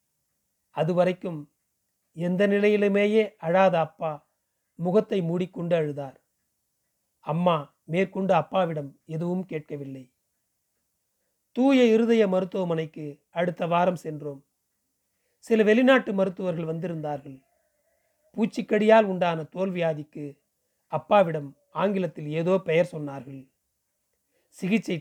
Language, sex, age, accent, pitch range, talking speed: Tamil, male, 40-59, native, 150-195 Hz, 70 wpm